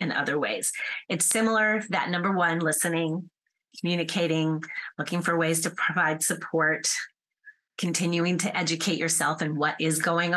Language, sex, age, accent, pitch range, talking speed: English, female, 30-49, American, 165-220 Hz, 140 wpm